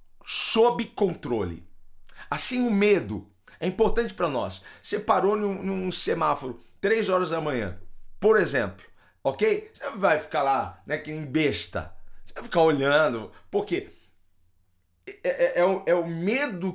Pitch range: 115-180 Hz